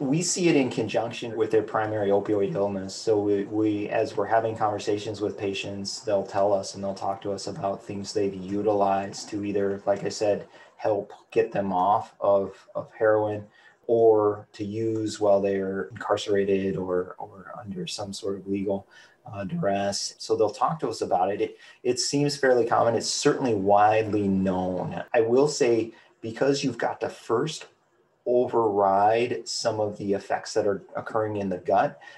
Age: 30-49